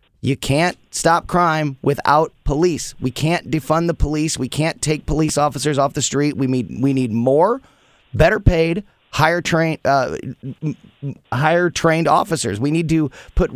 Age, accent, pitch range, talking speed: 30-49, American, 130-175 Hz, 150 wpm